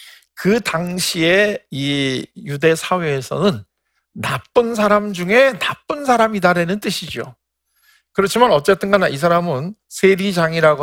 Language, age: Korean, 50-69